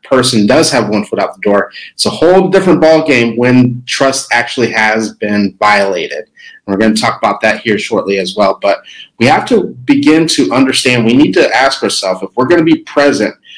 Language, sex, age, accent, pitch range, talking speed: English, male, 30-49, American, 110-145 Hz, 210 wpm